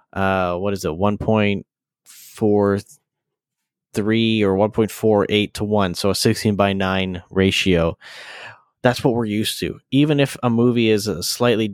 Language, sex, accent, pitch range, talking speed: English, male, American, 95-115 Hz, 140 wpm